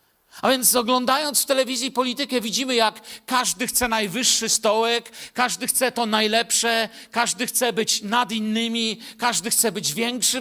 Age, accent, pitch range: 50-69, native, 200-240 Hz